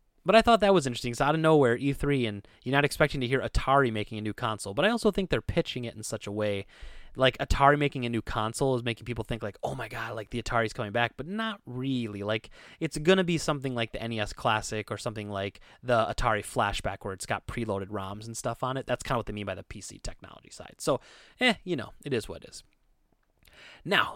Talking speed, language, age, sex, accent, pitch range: 245 wpm, English, 20-39, male, American, 105-135 Hz